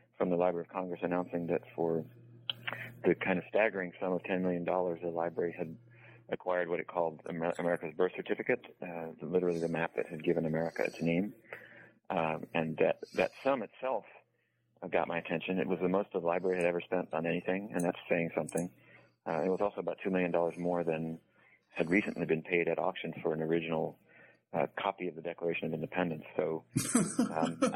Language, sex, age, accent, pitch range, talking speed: English, male, 40-59, American, 85-95 Hz, 190 wpm